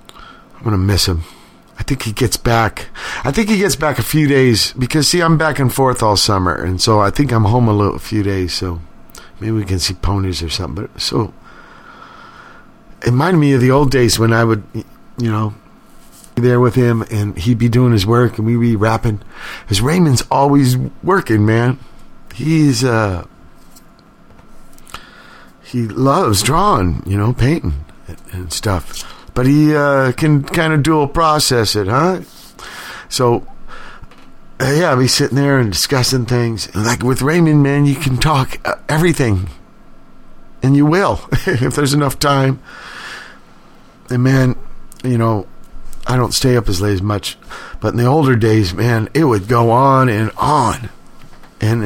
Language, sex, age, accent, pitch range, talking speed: English, male, 50-69, American, 105-140 Hz, 165 wpm